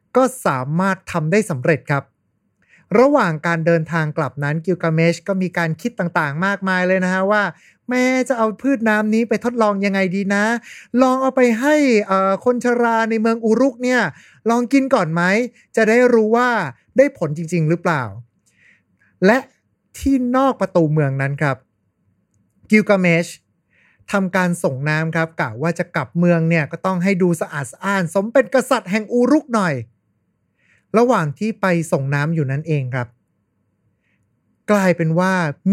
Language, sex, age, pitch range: Thai, male, 20-39, 150-210 Hz